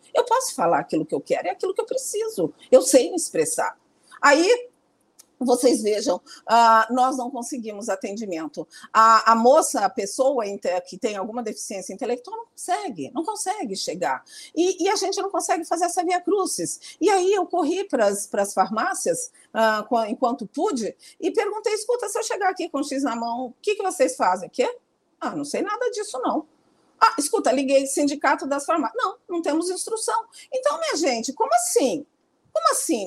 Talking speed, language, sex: 175 wpm, Portuguese, female